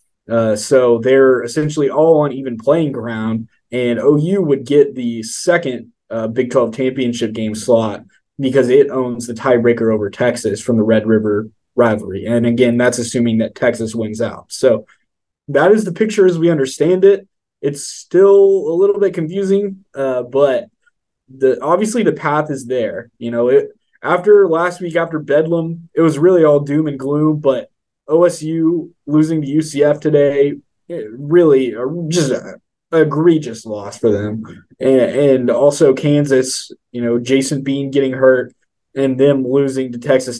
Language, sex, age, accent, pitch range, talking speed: English, male, 20-39, American, 120-150 Hz, 160 wpm